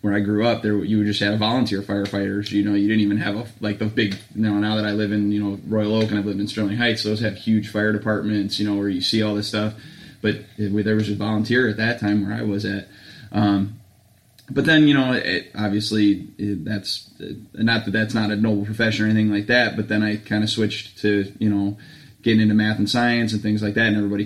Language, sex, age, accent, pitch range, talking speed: English, male, 20-39, American, 100-110 Hz, 260 wpm